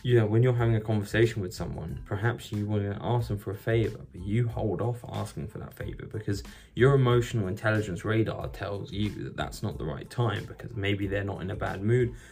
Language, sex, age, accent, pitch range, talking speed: English, male, 20-39, British, 100-125 Hz, 230 wpm